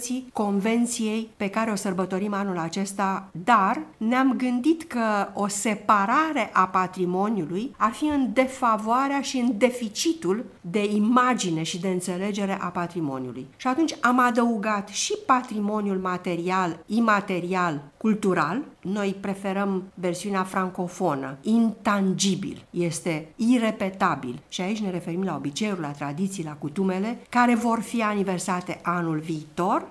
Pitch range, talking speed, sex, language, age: 175-225 Hz, 120 wpm, female, English, 50-69